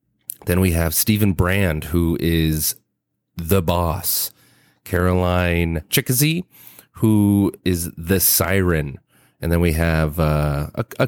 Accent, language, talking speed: American, English, 120 wpm